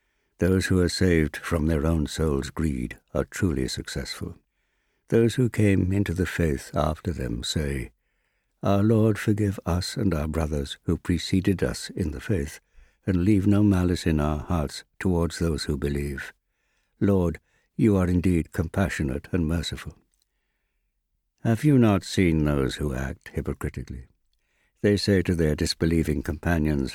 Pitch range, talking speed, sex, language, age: 75-100 Hz, 145 wpm, male, English, 60-79